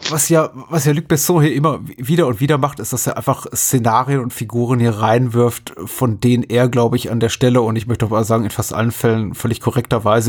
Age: 30-49